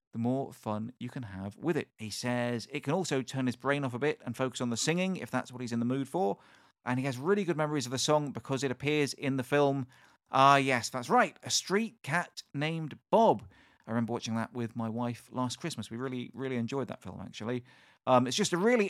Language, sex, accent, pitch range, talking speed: English, male, British, 115-145 Hz, 245 wpm